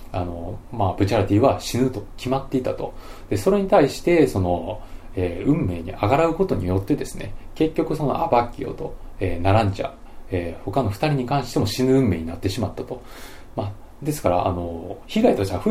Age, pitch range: 20-39, 95-125 Hz